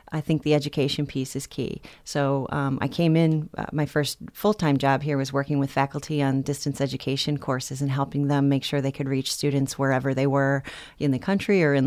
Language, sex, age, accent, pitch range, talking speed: English, female, 30-49, American, 140-160 Hz, 215 wpm